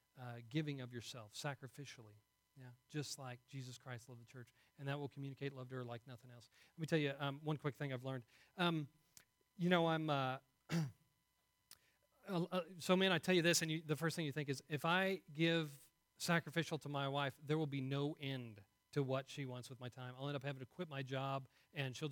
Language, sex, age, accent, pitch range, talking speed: English, male, 40-59, American, 135-165 Hz, 215 wpm